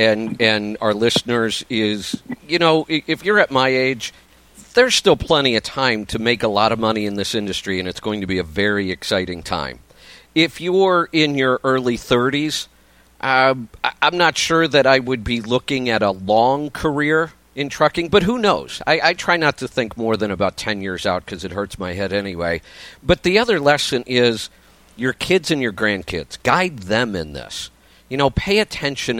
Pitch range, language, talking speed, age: 105-140 Hz, English, 195 wpm, 50-69